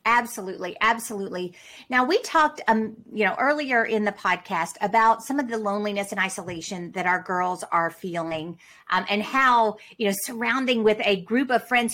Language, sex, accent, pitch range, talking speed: English, female, American, 200-255 Hz, 175 wpm